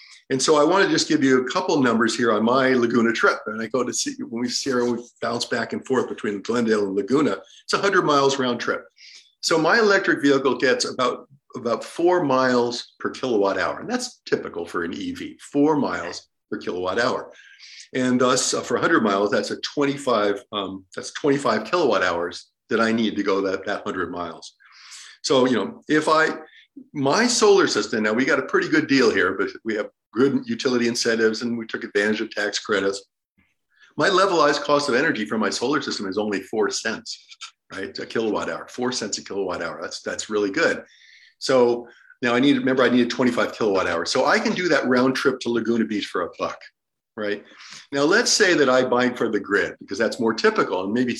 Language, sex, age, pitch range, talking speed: English, male, 50-69, 115-155 Hz, 210 wpm